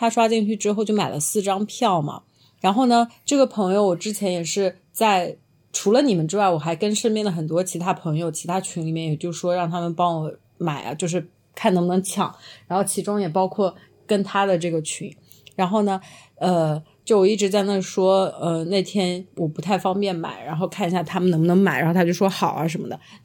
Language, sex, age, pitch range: Chinese, female, 30-49, 175-215 Hz